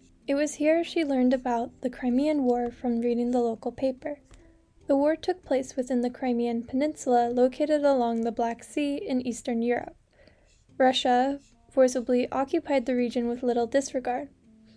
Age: 10-29